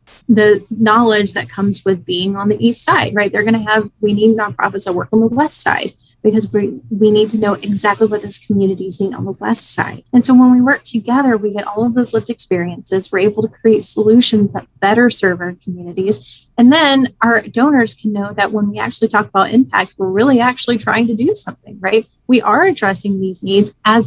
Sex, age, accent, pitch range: female, 30-49, American, 195-230 Hz